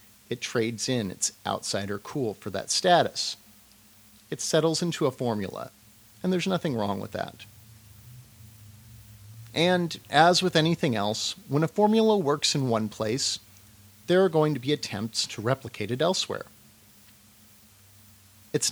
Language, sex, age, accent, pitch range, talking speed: English, male, 40-59, American, 105-135 Hz, 140 wpm